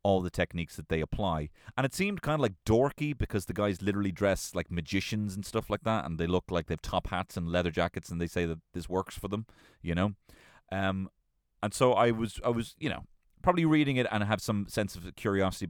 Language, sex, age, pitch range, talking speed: English, male, 30-49, 85-110 Hz, 245 wpm